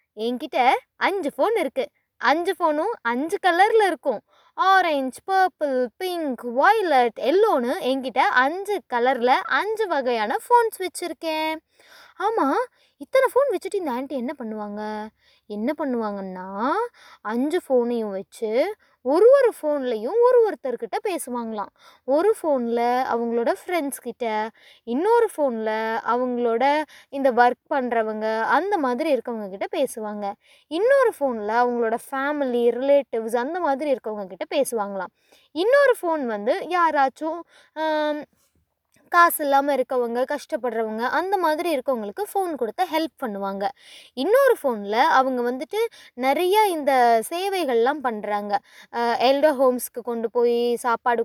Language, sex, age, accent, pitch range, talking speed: Tamil, female, 20-39, native, 240-350 Hz, 110 wpm